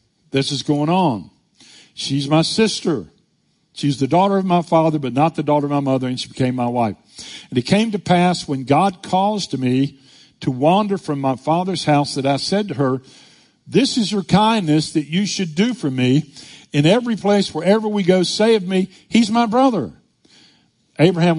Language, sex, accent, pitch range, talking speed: English, male, American, 140-190 Hz, 195 wpm